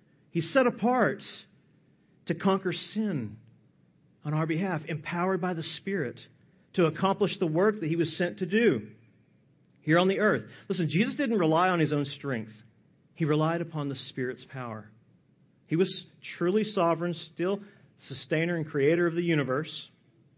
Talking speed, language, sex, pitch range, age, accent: 155 wpm, English, male, 150-190 Hz, 40-59, American